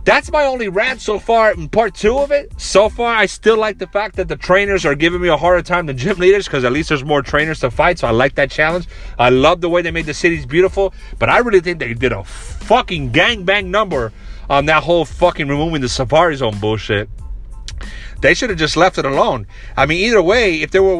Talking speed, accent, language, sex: 245 wpm, American, English, male